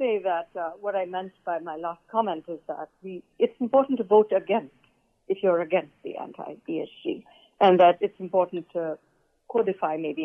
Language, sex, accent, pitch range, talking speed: English, female, Indian, 165-205 Hz, 170 wpm